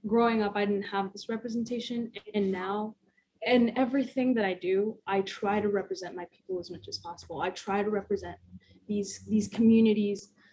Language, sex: English, female